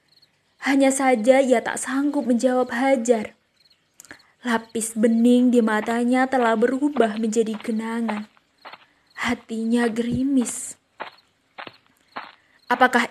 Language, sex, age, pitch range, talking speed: Indonesian, female, 20-39, 210-240 Hz, 80 wpm